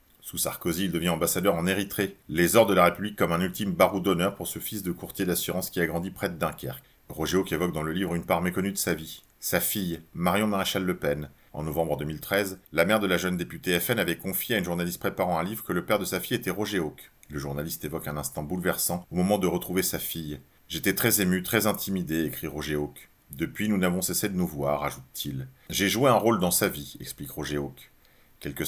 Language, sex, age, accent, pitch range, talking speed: French, male, 40-59, French, 80-95 Hz, 245 wpm